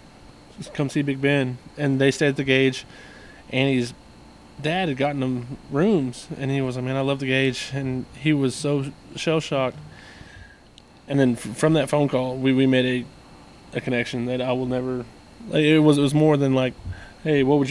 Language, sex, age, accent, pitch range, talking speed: English, male, 20-39, American, 130-150 Hz, 190 wpm